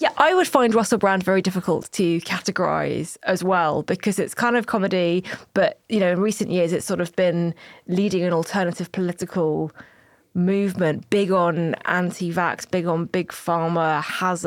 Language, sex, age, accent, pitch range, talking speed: English, female, 20-39, British, 165-190 Hz, 165 wpm